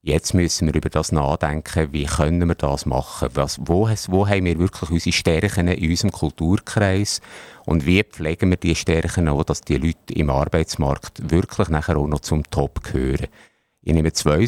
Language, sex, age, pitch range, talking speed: German, male, 50-69, 75-95 Hz, 180 wpm